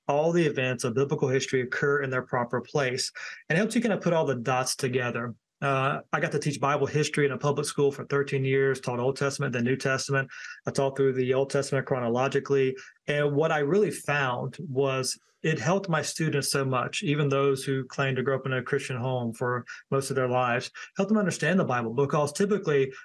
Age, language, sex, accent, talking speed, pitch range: 30-49, English, male, American, 220 wpm, 135-160 Hz